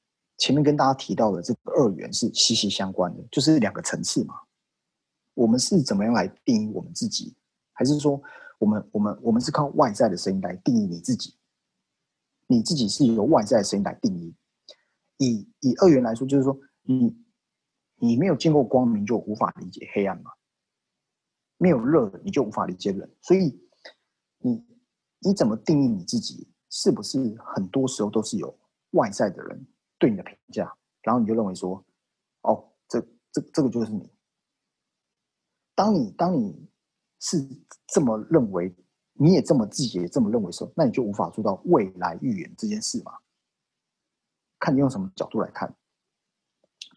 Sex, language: male, Chinese